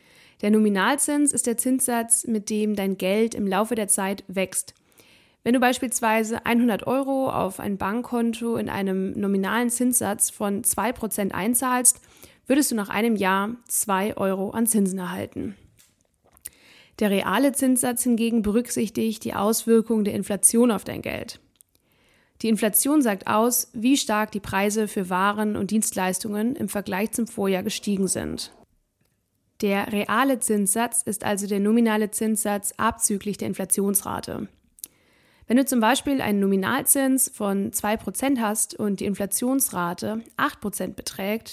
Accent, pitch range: German, 200-240 Hz